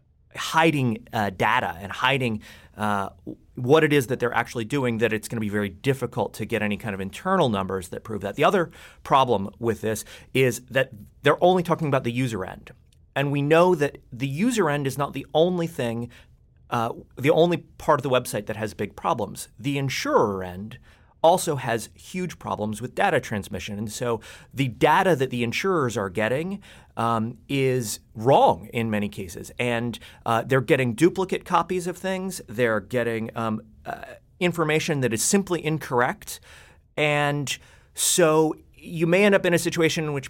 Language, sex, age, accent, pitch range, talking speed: English, male, 30-49, American, 110-155 Hz, 175 wpm